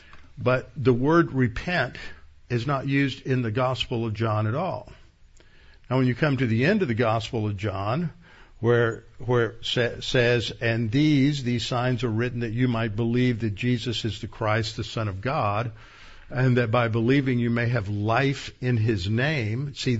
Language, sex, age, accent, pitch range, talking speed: English, male, 60-79, American, 110-135 Hz, 185 wpm